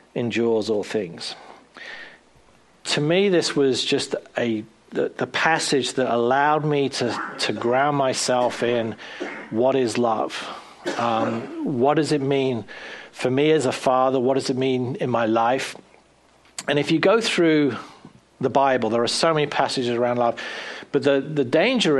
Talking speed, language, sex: 160 wpm, English, male